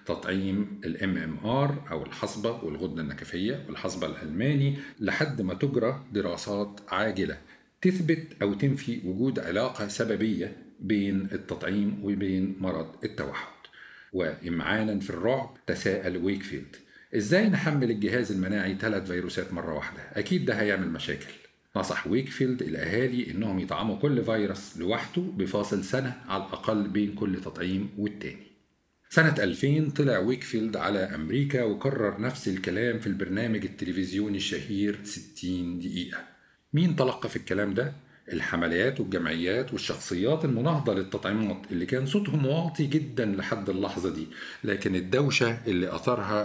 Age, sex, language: 50-69, male, Arabic